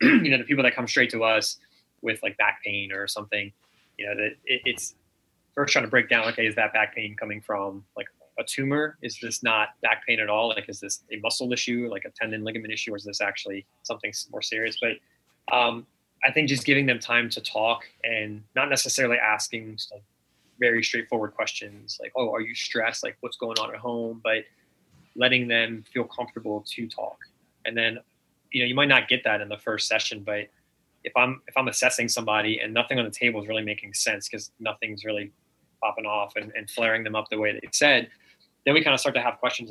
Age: 20-39